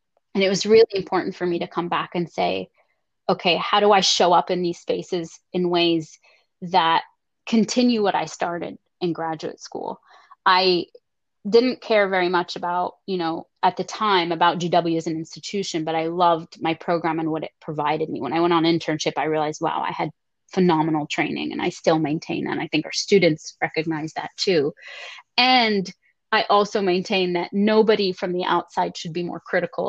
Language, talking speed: English, 190 wpm